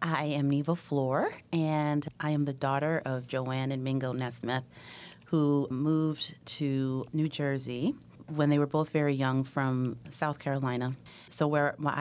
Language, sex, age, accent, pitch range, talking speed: English, female, 30-49, American, 130-155 Hz, 155 wpm